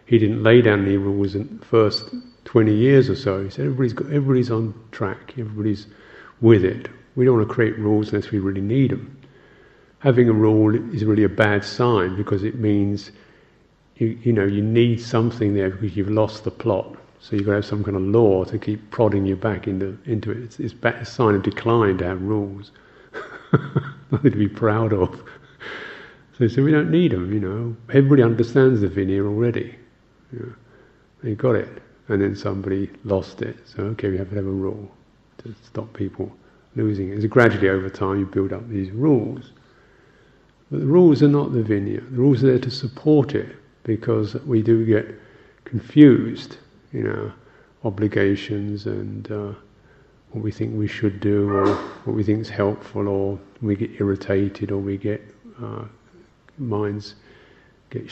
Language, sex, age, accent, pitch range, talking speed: English, male, 50-69, British, 100-120 Hz, 185 wpm